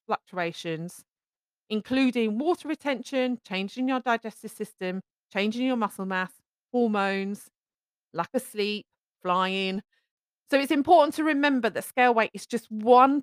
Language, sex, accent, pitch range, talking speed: English, female, British, 195-260 Hz, 125 wpm